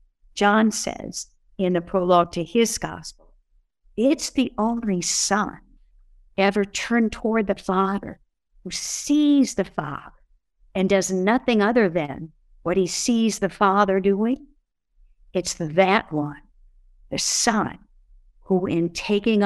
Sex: female